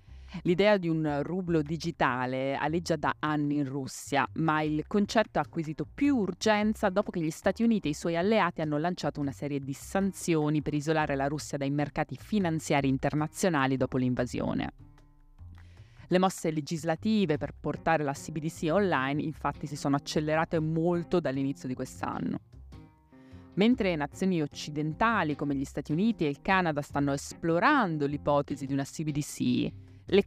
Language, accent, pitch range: Italian, native, 145-190 Hz